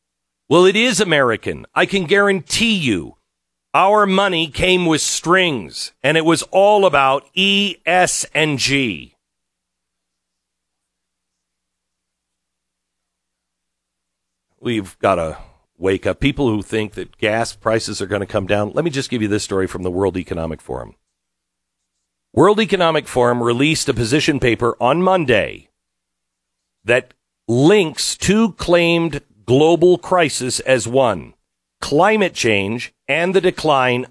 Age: 50-69